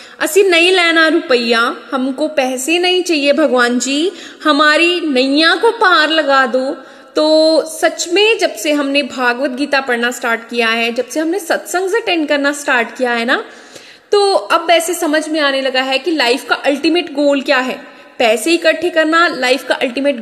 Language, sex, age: Hindi, female, 10-29